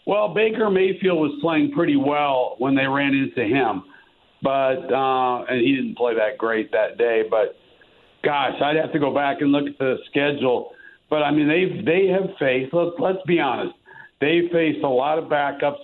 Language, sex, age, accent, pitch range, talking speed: English, male, 60-79, American, 130-175 Hz, 190 wpm